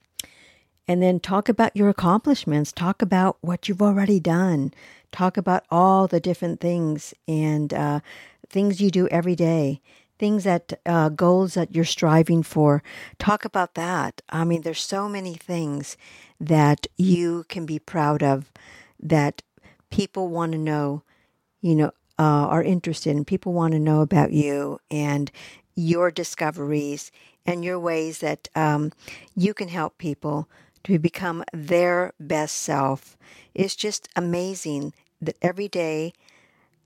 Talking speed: 145 wpm